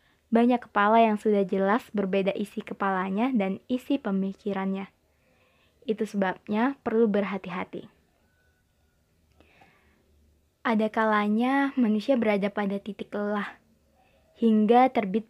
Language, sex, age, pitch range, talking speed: Indonesian, female, 20-39, 195-230 Hz, 90 wpm